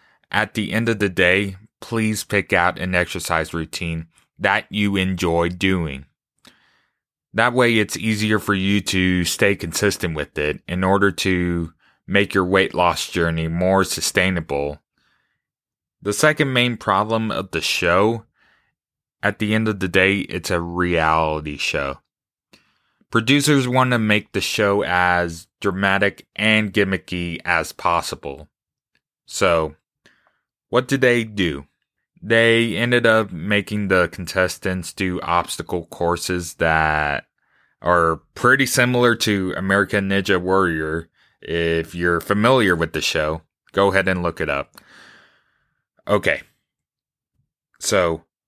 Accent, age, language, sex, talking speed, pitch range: American, 20-39, English, male, 125 wpm, 85-110 Hz